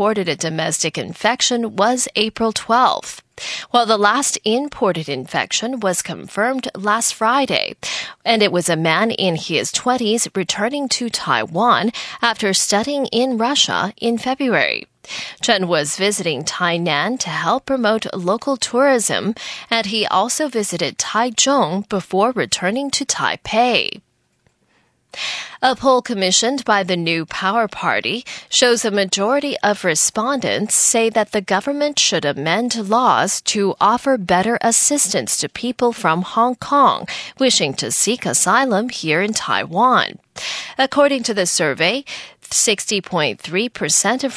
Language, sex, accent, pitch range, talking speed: English, female, American, 185-250 Hz, 125 wpm